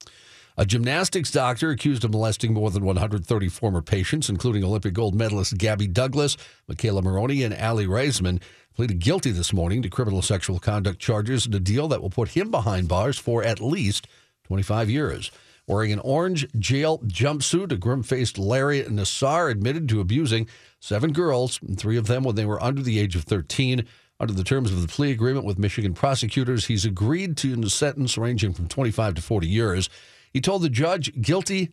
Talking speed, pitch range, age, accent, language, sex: 180 wpm, 100-130 Hz, 50-69, American, English, male